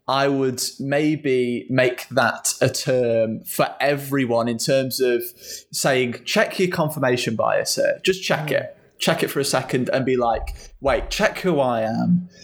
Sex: male